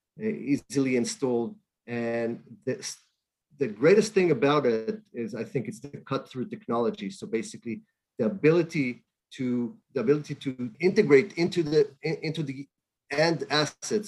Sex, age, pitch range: male, 40-59, 120-155 Hz